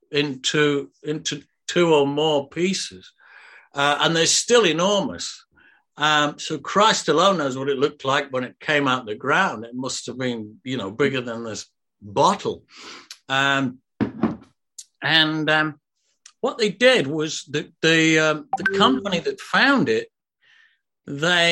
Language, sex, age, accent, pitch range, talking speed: English, male, 60-79, British, 135-185 Hz, 145 wpm